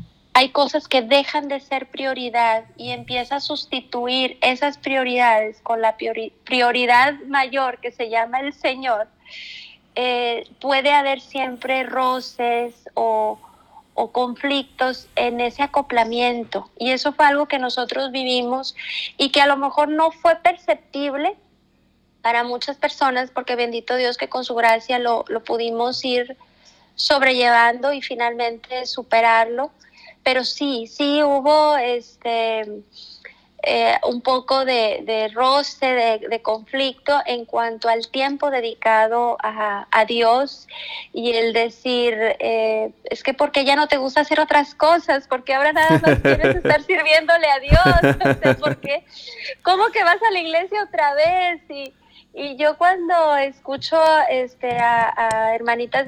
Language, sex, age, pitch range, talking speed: Spanish, female, 30-49, 235-285 Hz, 140 wpm